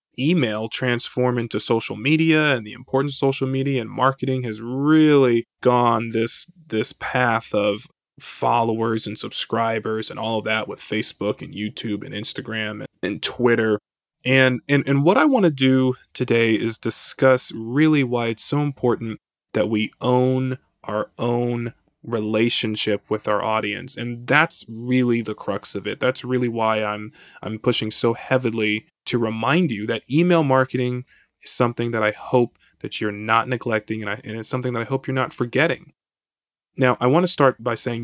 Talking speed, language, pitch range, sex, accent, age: 170 wpm, English, 110-140 Hz, male, American, 20-39